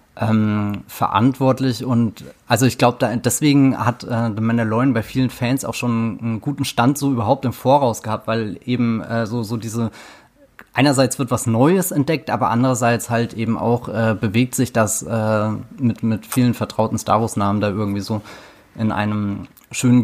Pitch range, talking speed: 110-125 Hz, 170 wpm